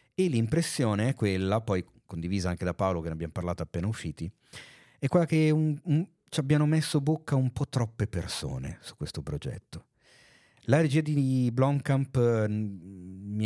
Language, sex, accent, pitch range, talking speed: Italian, male, native, 90-115 Hz, 150 wpm